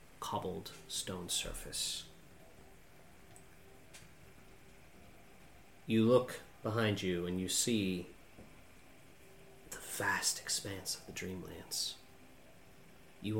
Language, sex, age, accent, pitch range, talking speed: English, male, 30-49, American, 90-110 Hz, 75 wpm